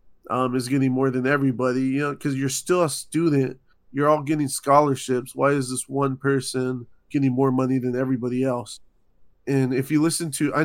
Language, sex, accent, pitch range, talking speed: English, male, American, 130-155 Hz, 190 wpm